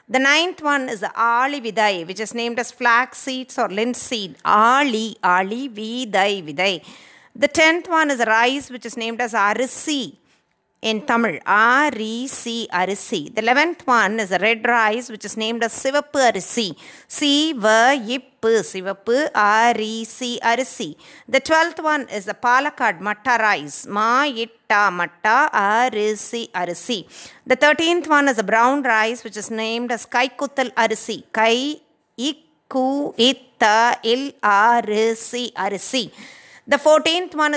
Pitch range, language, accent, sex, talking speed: 220-270 Hz, Tamil, native, female, 120 wpm